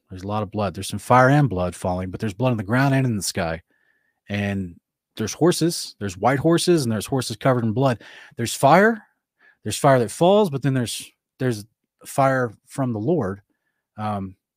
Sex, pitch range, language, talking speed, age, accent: male, 115-155 Hz, English, 200 wpm, 30-49, American